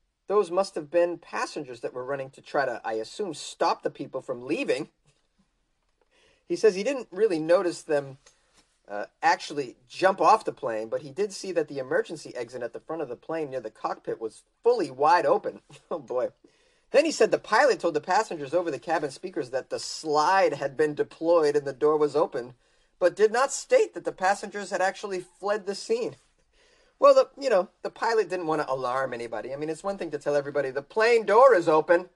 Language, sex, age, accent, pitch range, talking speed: English, male, 30-49, American, 150-255 Hz, 210 wpm